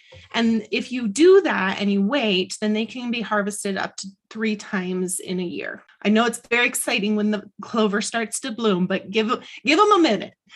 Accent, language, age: American, English, 30-49